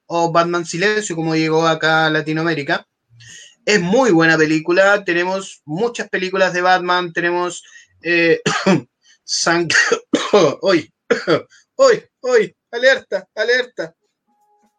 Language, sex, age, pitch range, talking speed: Spanish, male, 20-39, 155-210 Hz, 95 wpm